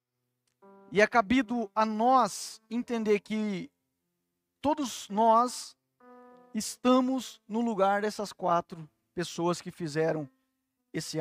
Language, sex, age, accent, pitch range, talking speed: Portuguese, male, 40-59, Brazilian, 155-220 Hz, 95 wpm